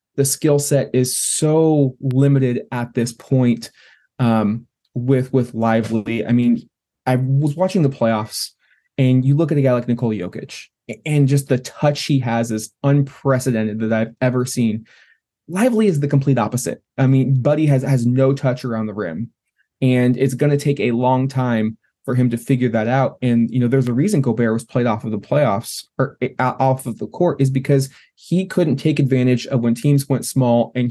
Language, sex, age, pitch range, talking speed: English, male, 20-39, 120-140 Hz, 195 wpm